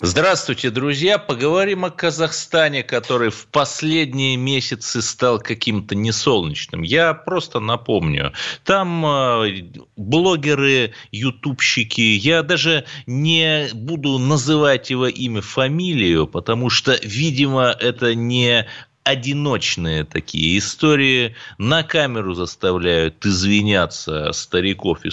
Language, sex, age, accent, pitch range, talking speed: Russian, male, 30-49, native, 105-155 Hz, 95 wpm